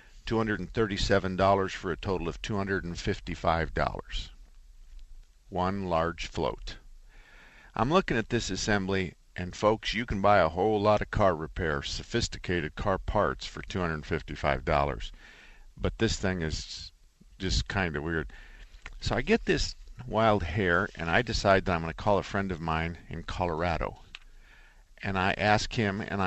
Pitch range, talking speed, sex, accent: 85-110 Hz, 175 wpm, male, American